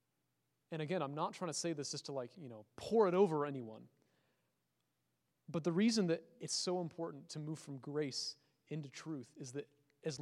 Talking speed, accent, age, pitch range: 195 wpm, American, 30-49, 140-200 Hz